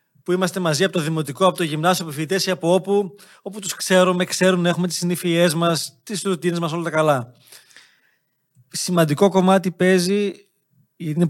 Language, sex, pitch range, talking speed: Greek, male, 150-185 Hz, 175 wpm